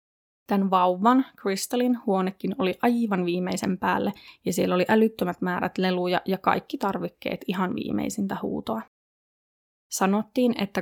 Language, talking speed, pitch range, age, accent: Finnish, 120 wpm, 190-225 Hz, 20-39, native